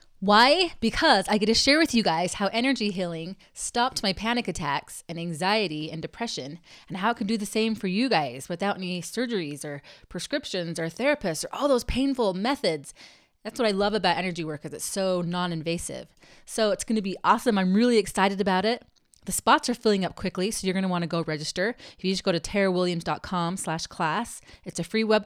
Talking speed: 215 wpm